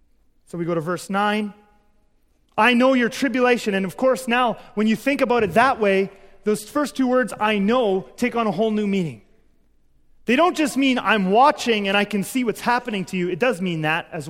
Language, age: English, 30-49